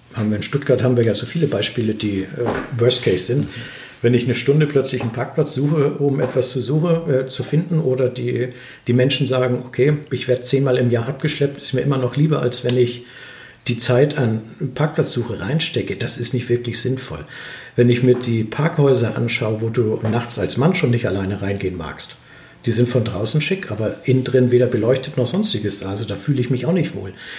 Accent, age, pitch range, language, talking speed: German, 50-69, 120-140 Hz, German, 215 wpm